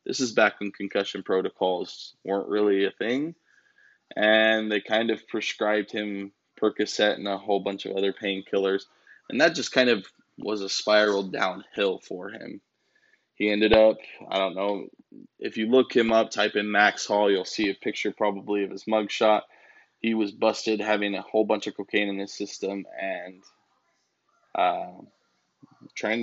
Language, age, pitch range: English, 20-39, 105-140 Hz